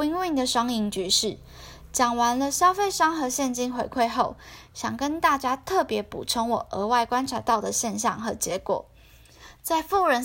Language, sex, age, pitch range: Chinese, female, 10-29, 220-280 Hz